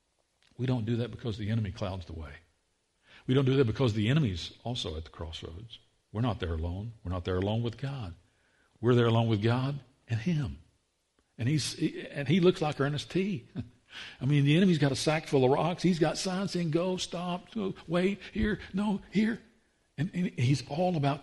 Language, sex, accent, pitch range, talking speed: English, male, American, 105-165 Hz, 205 wpm